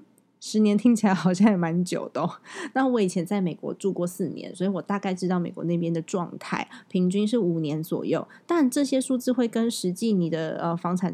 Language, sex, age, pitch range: Chinese, female, 20-39, 180-225 Hz